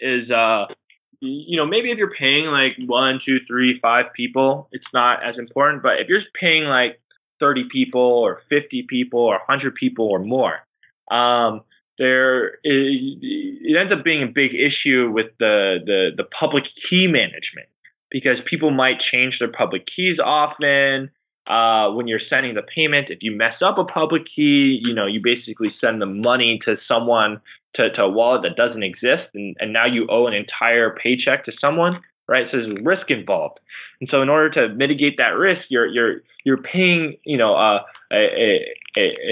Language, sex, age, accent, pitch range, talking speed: English, male, 20-39, American, 120-155 Hz, 185 wpm